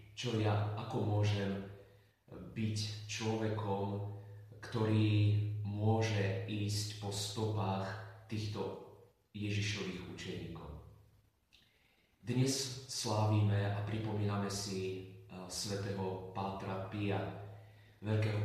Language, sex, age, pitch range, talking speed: Slovak, male, 30-49, 100-110 Hz, 75 wpm